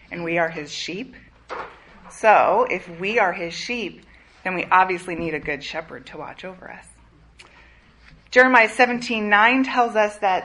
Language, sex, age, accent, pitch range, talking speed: English, female, 30-49, American, 170-230 Hz, 155 wpm